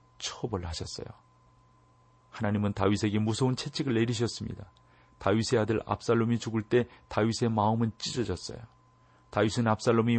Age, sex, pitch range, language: 40-59, male, 105-130 Hz, Korean